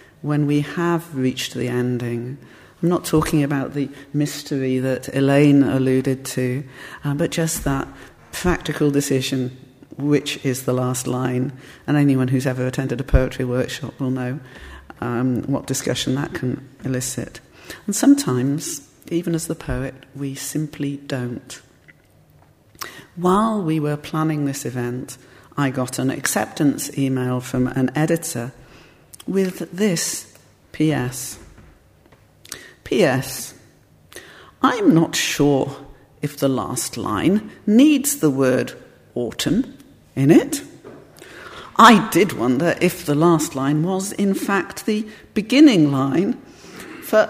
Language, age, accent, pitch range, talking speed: English, 50-69, British, 130-170 Hz, 125 wpm